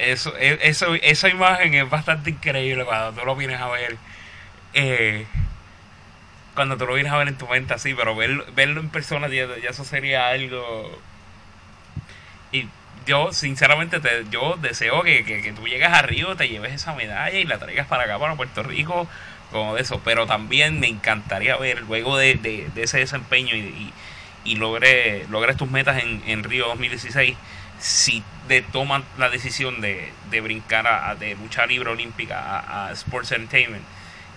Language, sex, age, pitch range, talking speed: English, male, 30-49, 105-135 Hz, 175 wpm